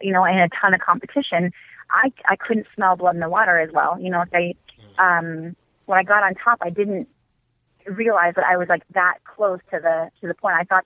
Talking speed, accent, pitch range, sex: 240 wpm, American, 175-200 Hz, female